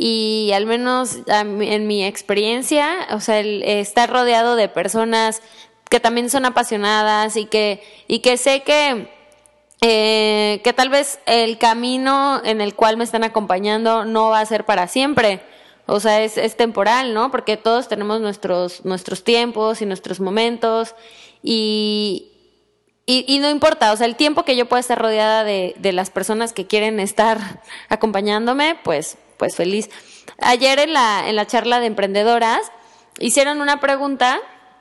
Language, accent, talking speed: Spanish, Mexican, 160 wpm